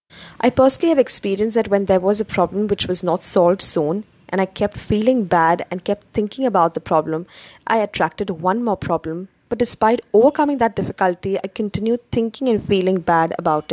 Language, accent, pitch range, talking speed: English, Indian, 175-220 Hz, 190 wpm